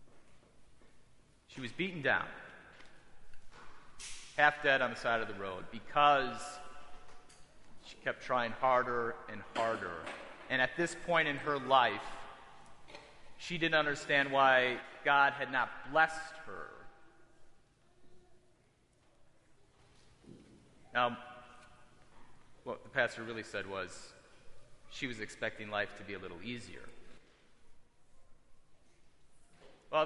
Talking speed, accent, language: 100 wpm, American, English